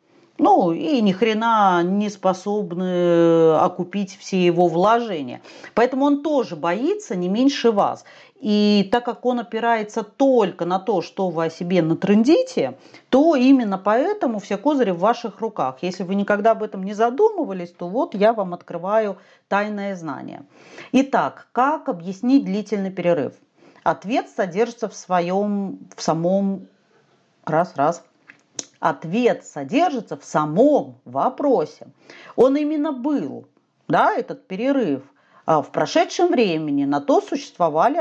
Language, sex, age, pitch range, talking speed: Russian, female, 40-59, 190-265 Hz, 130 wpm